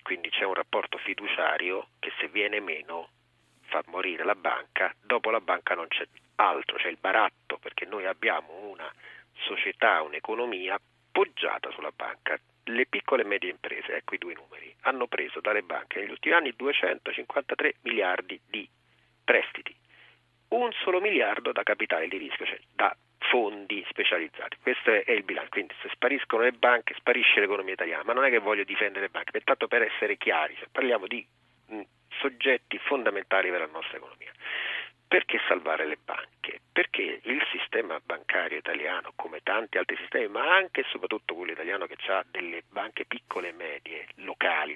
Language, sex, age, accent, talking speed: Italian, male, 40-59, native, 160 wpm